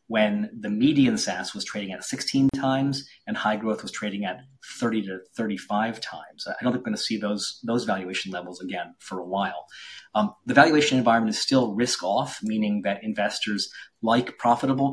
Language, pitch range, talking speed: English, 100-125 Hz, 185 wpm